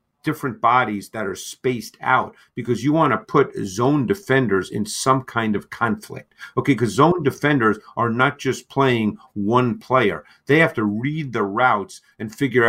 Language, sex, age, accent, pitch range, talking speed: English, male, 50-69, American, 115-145 Hz, 170 wpm